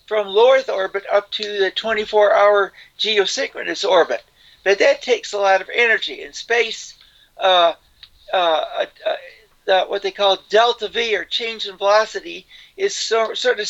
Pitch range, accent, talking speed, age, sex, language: 190-265 Hz, American, 160 wpm, 60-79, male, English